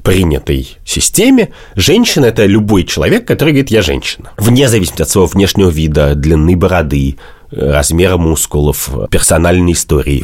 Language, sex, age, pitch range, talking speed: Russian, male, 30-49, 75-95 Hz, 130 wpm